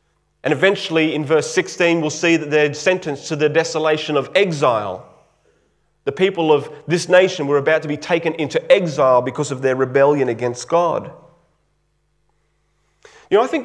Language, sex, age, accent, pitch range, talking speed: English, male, 30-49, Australian, 110-165 Hz, 165 wpm